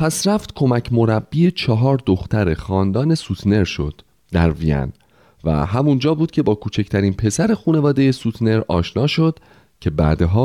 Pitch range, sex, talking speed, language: 95-150 Hz, male, 140 wpm, Persian